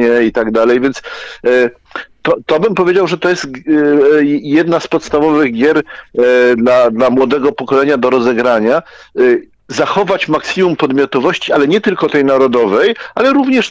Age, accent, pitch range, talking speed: 50-69, native, 125-175 Hz, 135 wpm